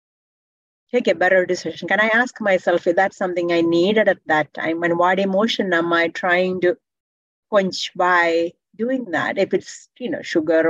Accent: Indian